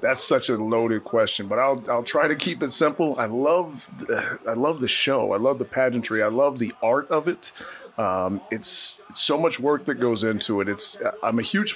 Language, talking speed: English, 220 wpm